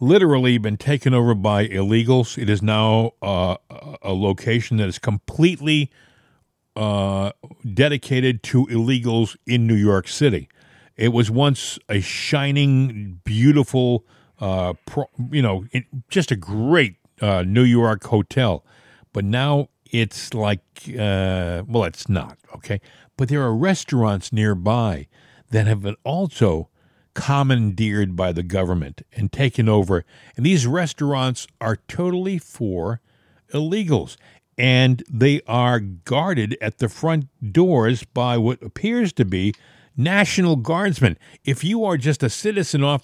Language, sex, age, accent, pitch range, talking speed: English, male, 50-69, American, 110-150 Hz, 130 wpm